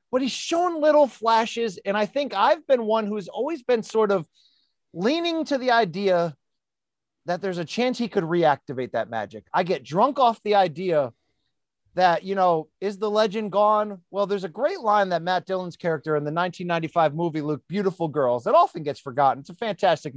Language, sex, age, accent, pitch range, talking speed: English, male, 30-49, American, 175-245 Hz, 195 wpm